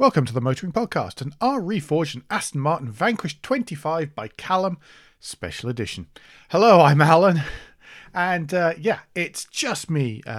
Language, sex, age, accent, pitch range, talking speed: English, male, 40-59, British, 100-150 Hz, 155 wpm